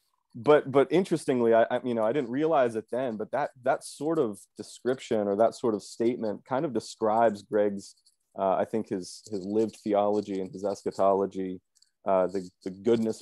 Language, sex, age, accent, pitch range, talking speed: English, male, 30-49, American, 95-110 Hz, 185 wpm